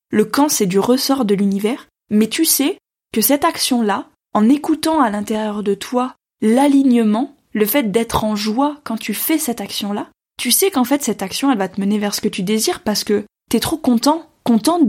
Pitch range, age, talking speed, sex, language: 220-285 Hz, 20-39, 210 wpm, female, French